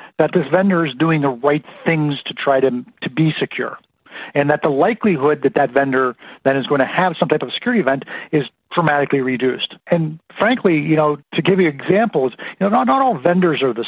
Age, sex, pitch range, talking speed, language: 40-59, male, 135-175 Hz, 215 wpm, English